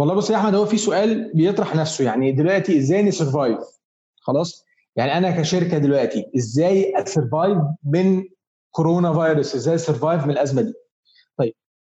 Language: Arabic